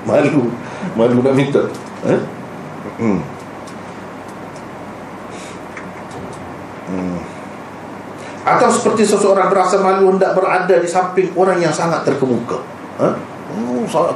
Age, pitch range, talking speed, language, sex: 40-59, 130-200 Hz, 100 wpm, Malay, male